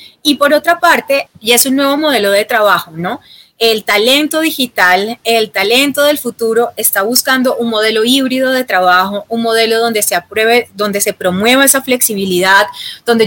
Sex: female